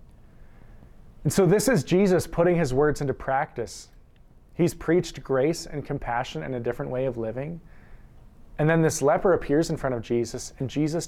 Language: English